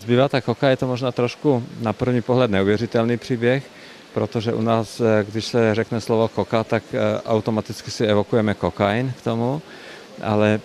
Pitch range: 105-115 Hz